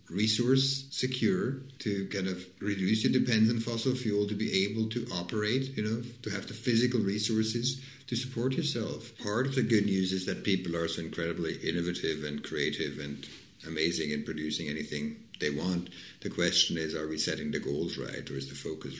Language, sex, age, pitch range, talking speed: English, male, 50-69, 75-105 Hz, 190 wpm